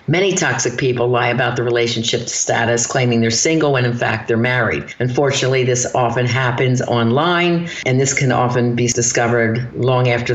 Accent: American